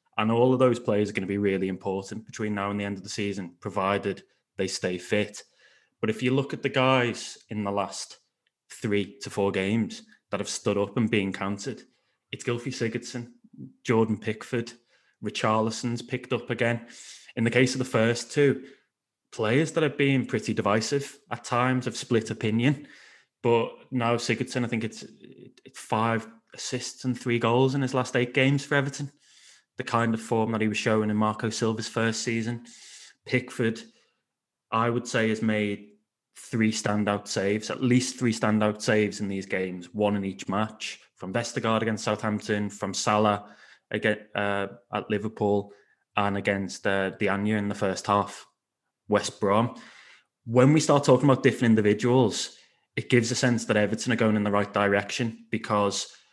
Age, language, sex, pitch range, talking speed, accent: 20-39, English, male, 105-125 Hz, 175 wpm, British